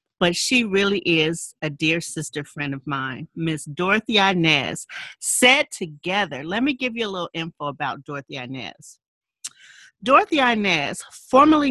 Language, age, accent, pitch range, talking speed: English, 40-59, American, 175-255 Hz, 145 wpm